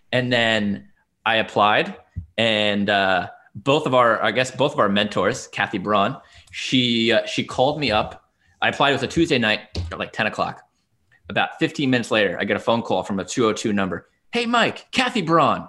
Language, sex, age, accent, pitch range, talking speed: English, male, 20-39, American, 100-135 Hz, 190 wpm